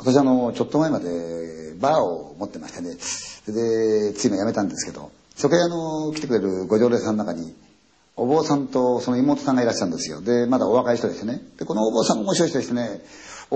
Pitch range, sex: 110-155 Hz, male